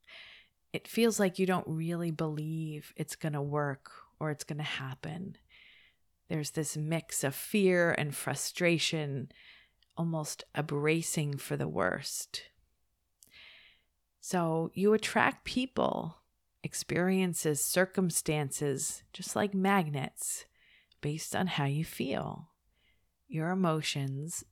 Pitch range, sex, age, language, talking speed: 150-185 Hz, female, 40-59, English, 110 wpm